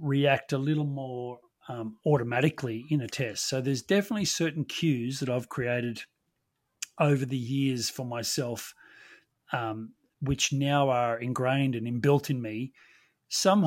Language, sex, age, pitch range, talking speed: English, male, 30-49, 120-150 Hz, 140 wpm